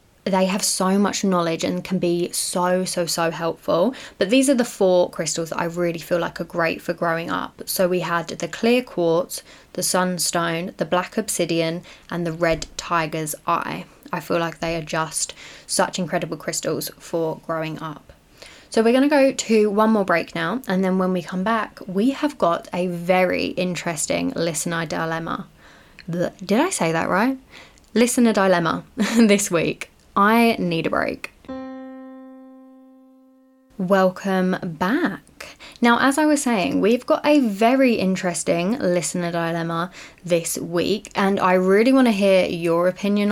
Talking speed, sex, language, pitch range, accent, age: 160 wpm, female, English, 170-230 Hz, British, 10-29